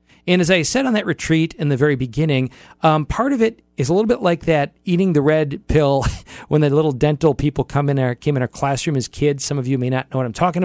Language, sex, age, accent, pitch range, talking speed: English, male, 40-59, American, 130-170 Hz, 270 wpm